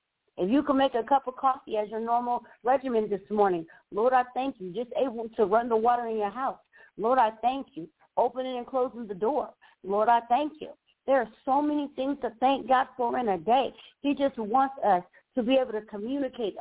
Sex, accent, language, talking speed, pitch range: female, American, English, 220 wpm, 210-260 Hz